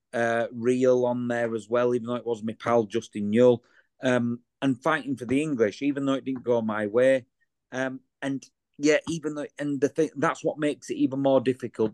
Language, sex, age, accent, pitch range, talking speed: English, male, 40-59, British, 115-135 Hz, 210 wpm